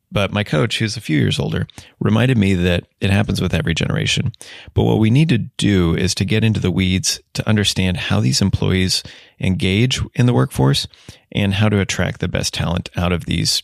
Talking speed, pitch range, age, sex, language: 205 wpm, 90-115 Hz, 30-49, male, English